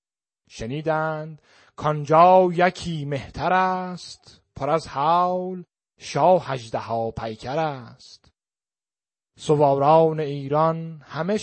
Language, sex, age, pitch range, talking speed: Persian, male, 30-49, 120-170 Hz, 80 wpm